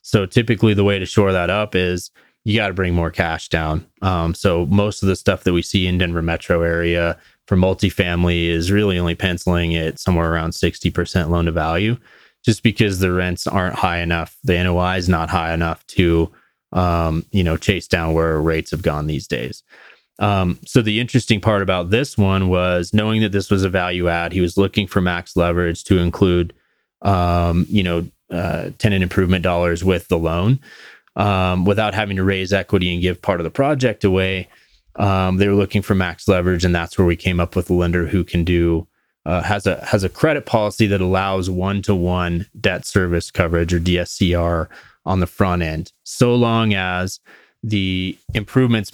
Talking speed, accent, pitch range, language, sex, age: 195 wpm, American, 85-100 Hz, English, male, 30-49